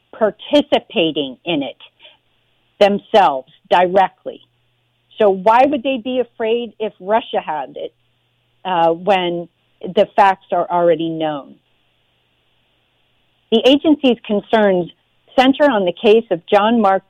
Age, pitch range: 40-59, 165-215 Hz